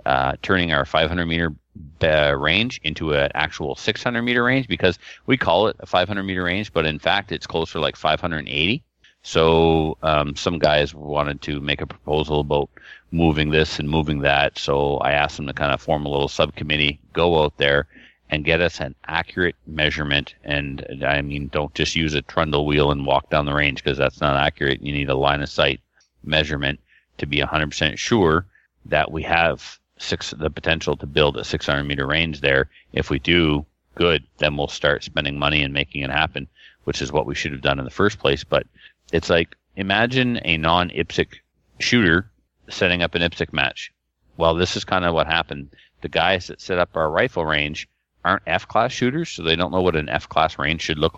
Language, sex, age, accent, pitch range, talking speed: English, male, 30-49, American, 70-80 Hz, 190 wpm